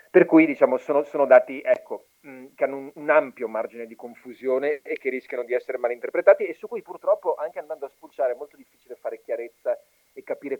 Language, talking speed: Italian, 210 wpm